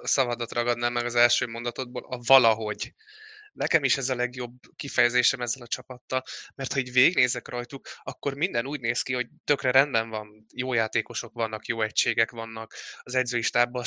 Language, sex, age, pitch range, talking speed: Hungarian, male, 20-39, 115-130 Hz, 165 wpm